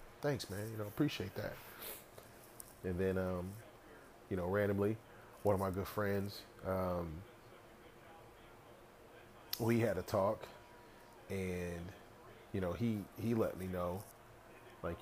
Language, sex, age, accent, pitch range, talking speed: English, male, 30-49, American, 90-115 Hz, 130 wpm